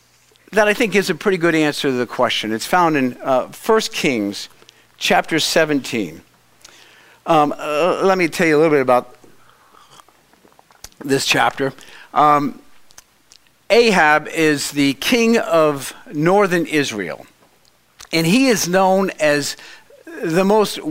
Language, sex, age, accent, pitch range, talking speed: English, male, 50-69, American, 140-190 Hz, 130 wpm